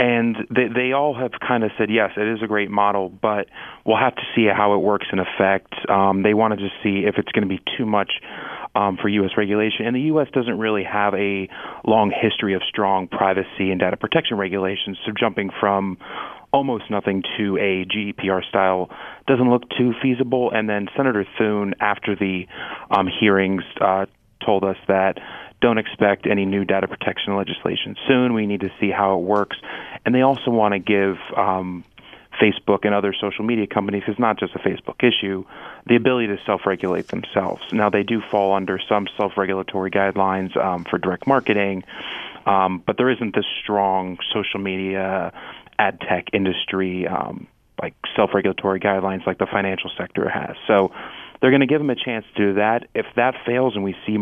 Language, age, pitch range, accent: English, 30-49, 95-110 Hz, American